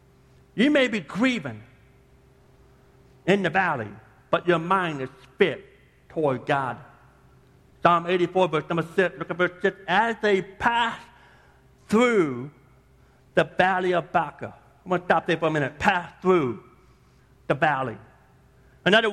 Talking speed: 140 wpm